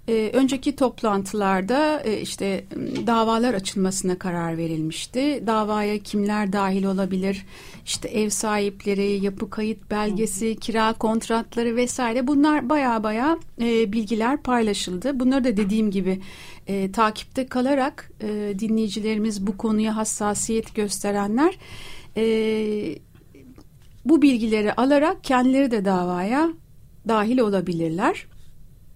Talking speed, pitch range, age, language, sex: 90 wpm, 205-250 Hz, 60-79, Turkish, female